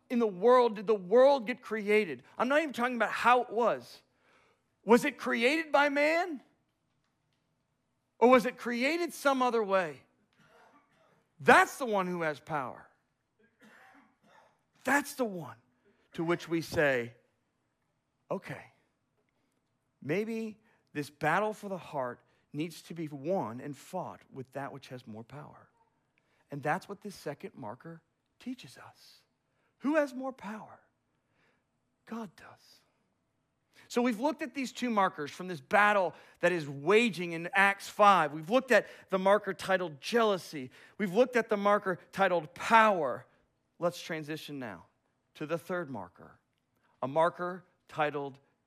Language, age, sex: English, 40-59, male